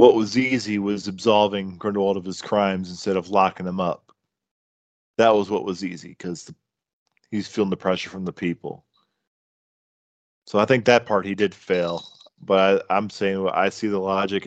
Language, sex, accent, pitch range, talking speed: English, male, American, 95-115 Hz, 180 wpm